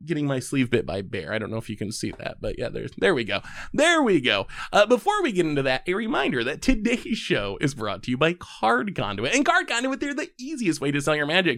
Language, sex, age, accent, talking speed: English, male, 20-39, American, 270 wpm